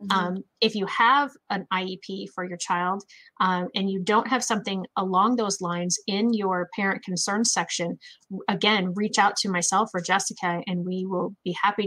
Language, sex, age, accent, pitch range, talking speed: English, female, 30-49, American, 190-245 Hz, 175 wpm